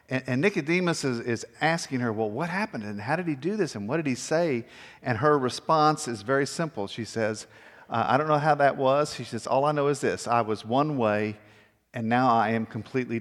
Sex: male